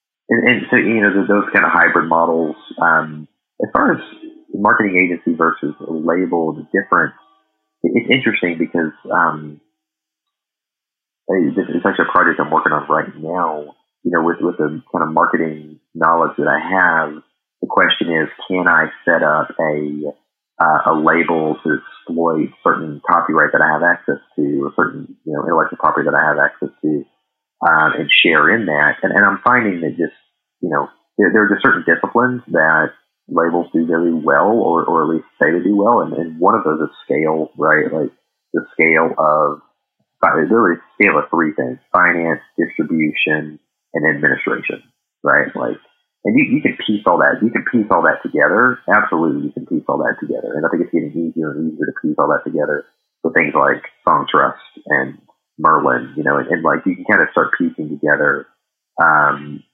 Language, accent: English, American